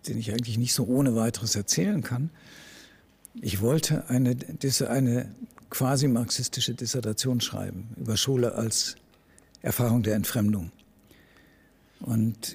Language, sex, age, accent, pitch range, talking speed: German, male, 60-79, German, 110-130 Hz, 110 wpm